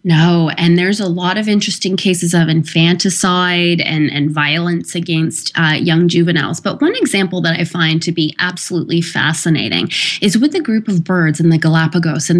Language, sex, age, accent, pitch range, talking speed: English, female, 20-39, American, 165-235 Hz, 180 wpm